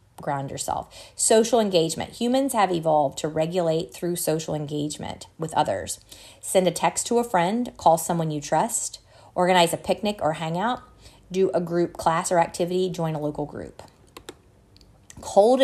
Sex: female